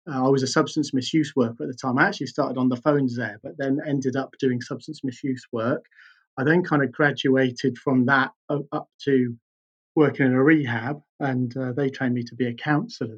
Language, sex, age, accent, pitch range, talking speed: English, male, 30-49, British, 125-150 Hz, 215 wpm